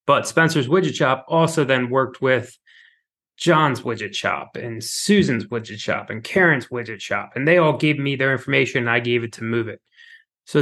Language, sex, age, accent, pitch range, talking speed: English, male, 20-39, American, 115-155 Hz, 190 wpm